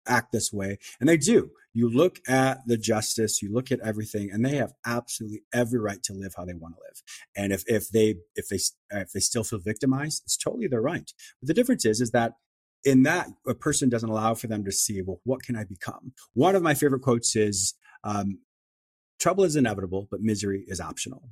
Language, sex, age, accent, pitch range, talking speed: English, male, 30-49, American, 105-130 Hz, 220 wpm